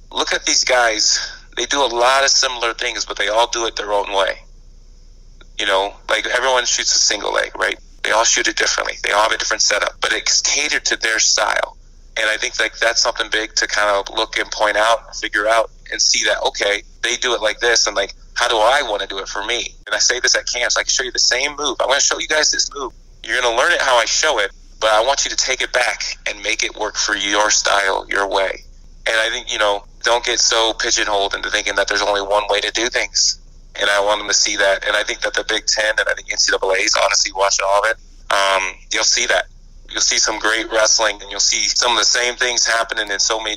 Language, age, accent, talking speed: English, 30-49, American, 265 wpm